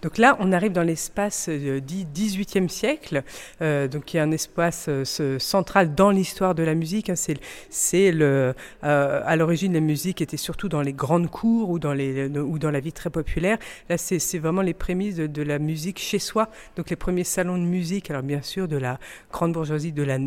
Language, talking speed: French, 205 wpm